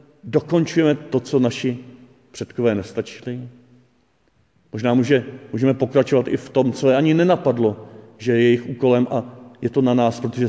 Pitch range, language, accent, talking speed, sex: 115-135 Hz, Czech, native, 155 wpm, male